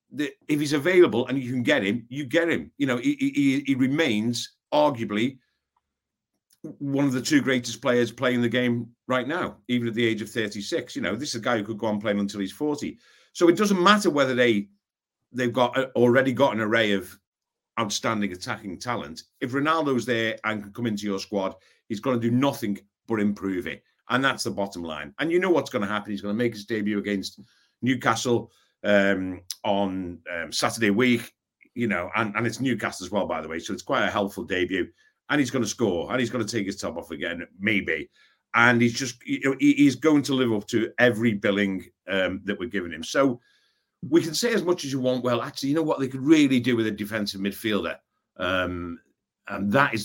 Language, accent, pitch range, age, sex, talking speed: English, British, 105-135 Hz, 50-69, male, 225 wpm